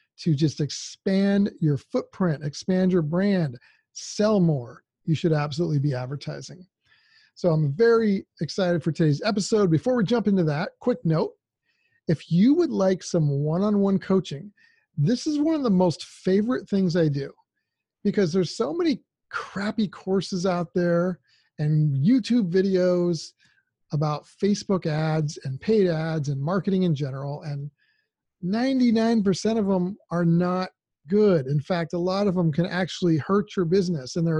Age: 40-59